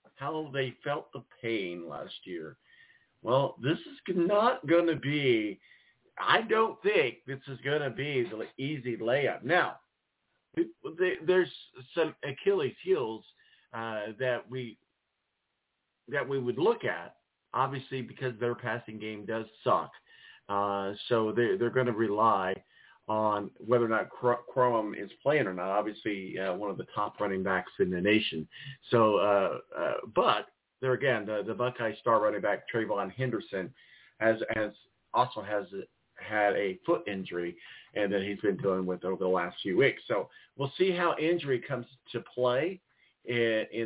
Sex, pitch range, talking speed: male, 105-155 Hz, 160 wpm